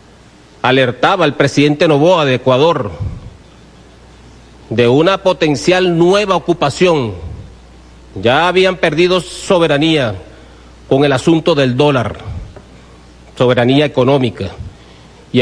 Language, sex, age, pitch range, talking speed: Spanish, male, 40-59, 115-160 Hz, 90 wpm